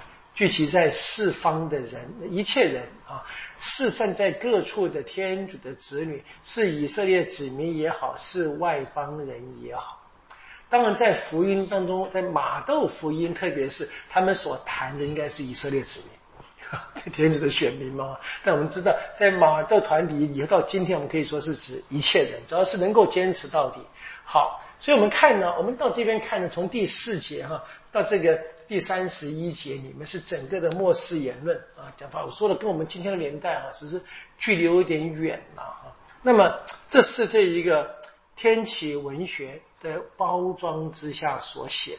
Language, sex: Chinese, male